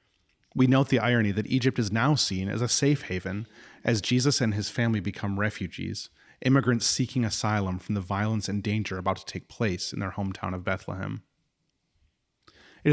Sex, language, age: male, English, 30-49